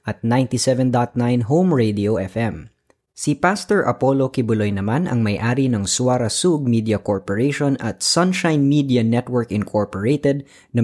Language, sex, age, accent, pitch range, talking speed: Filipino, female, 20-39, native, 110-135 Hz, 125 wpm